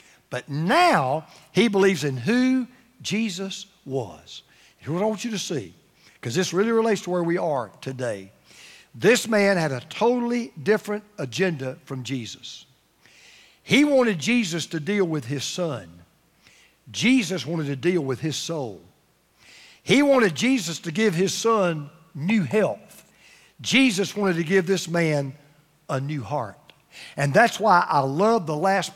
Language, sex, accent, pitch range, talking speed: English, male, American, 145-200 Hz, 150 wpm